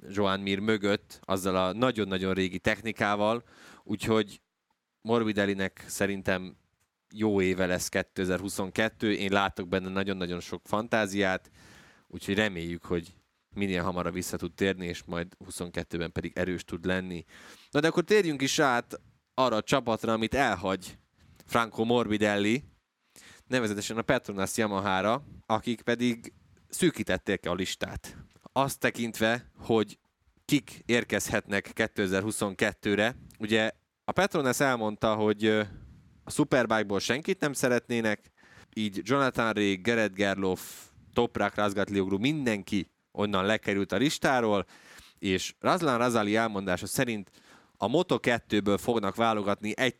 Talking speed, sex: 115 wpm, male